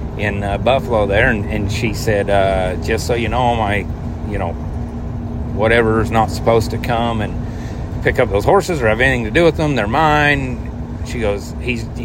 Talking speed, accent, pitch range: 195 wpm, American, 105-120 Hz